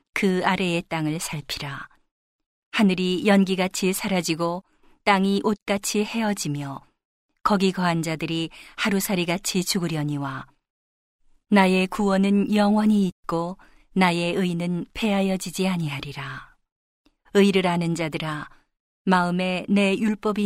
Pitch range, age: 165-200 Hz, 40-59